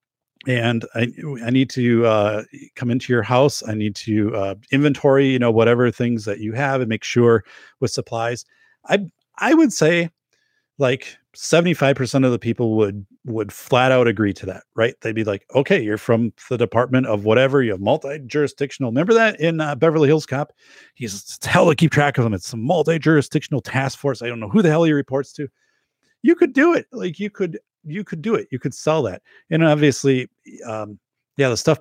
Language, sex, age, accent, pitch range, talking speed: English, male, 40-59, American, 115-155 Hz, 200 wpm